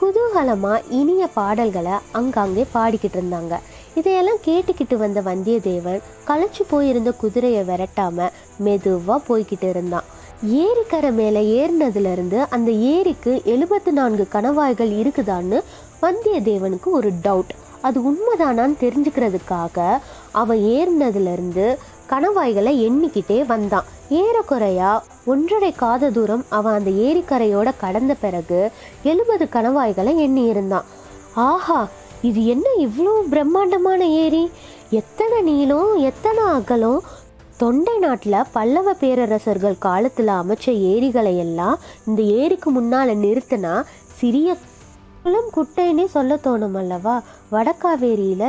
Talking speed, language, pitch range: 90 wpm, Tamil, 205-305 Hz